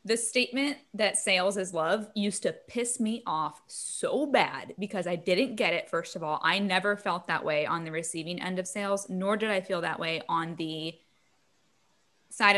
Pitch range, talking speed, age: 180-225 Hz, 195 wpm, 10-29